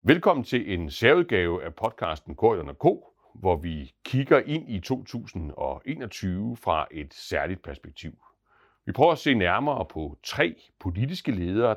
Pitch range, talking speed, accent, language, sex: 80-115 Hz, 135 wpm, native, Danish, male